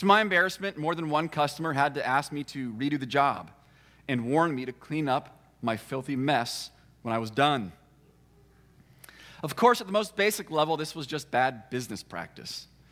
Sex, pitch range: male, 125-155 Hz